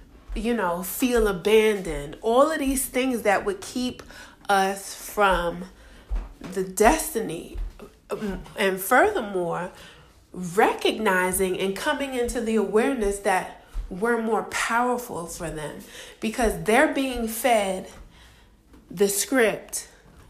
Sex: female